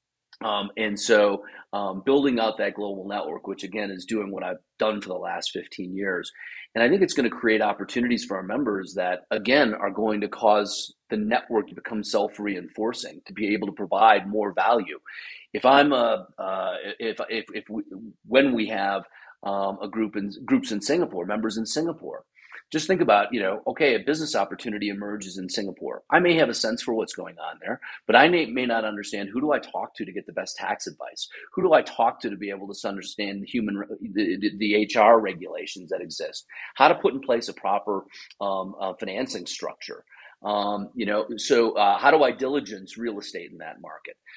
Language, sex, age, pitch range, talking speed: English, male, 40-59, 105-140 Hz, 205 wpm